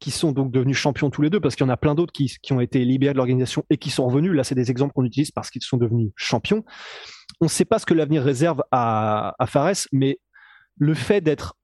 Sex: male